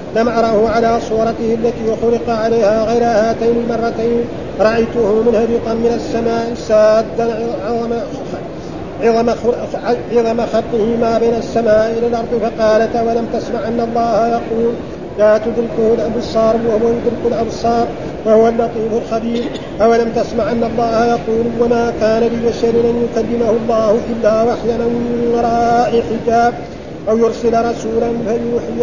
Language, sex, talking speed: Arabic, male, 125 wpm